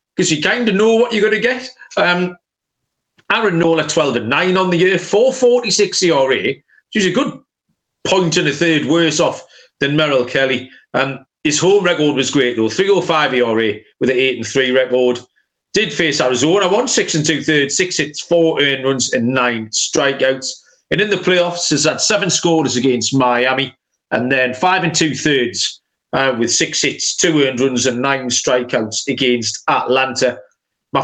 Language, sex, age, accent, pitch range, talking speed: English, male, 40-59, British, 135-175 Hz, 185 wpm